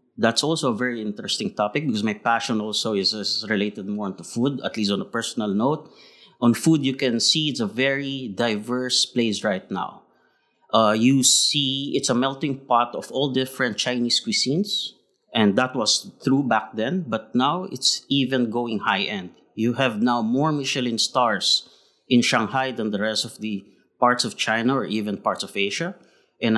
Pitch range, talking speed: 110-140 Hz, 180 wpm